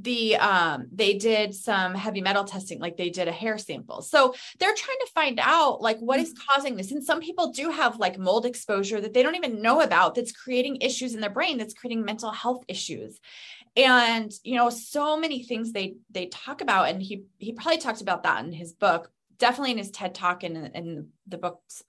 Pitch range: 185-250 Hz